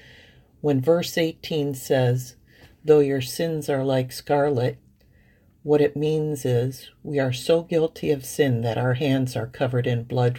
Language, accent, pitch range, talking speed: English, American, 120-150 Hz, 155 wpm